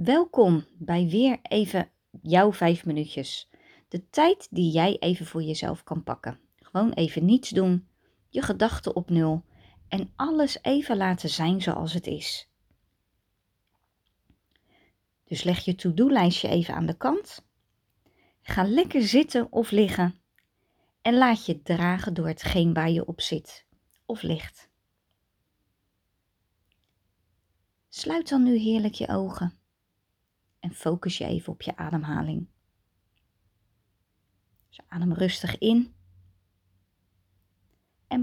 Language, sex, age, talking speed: Dutch, female, 30-49, 115 wpm